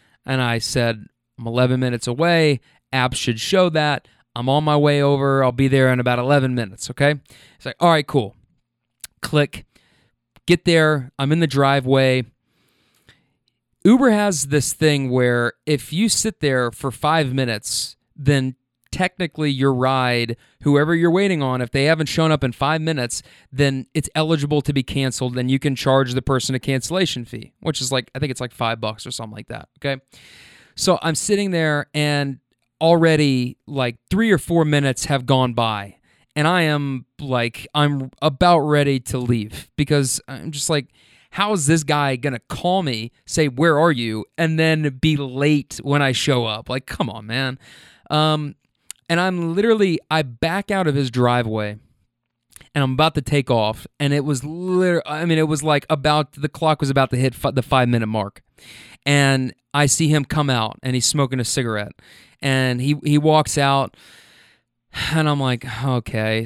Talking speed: 180 wpm